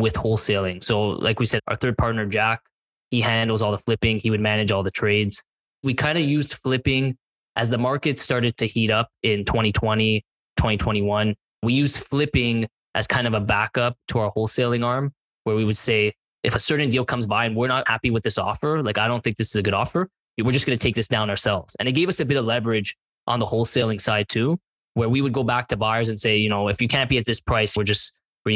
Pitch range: 110-130 Hz